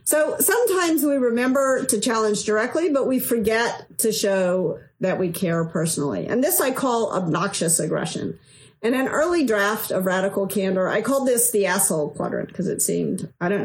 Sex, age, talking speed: female, 50-69, 175 wpm